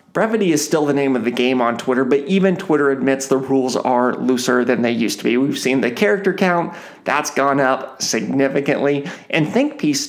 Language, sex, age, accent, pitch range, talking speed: English, male, 30-49, American, 125-160 Hz, 200 wpm